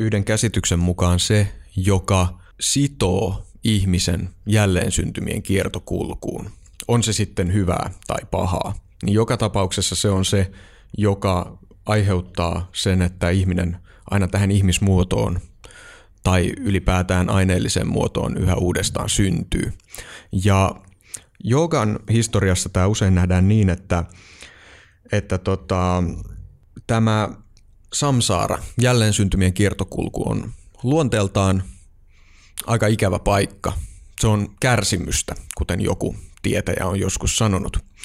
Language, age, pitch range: Finnish, 30-49, 90-105 Hz